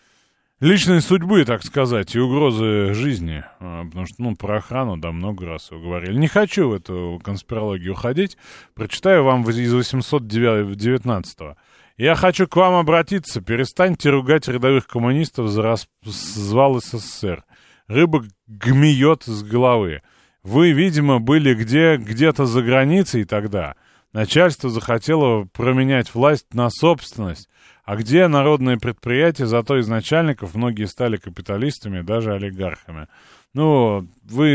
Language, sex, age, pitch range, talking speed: Russian, male, 30-49, 100-145 Hz, 125 wpm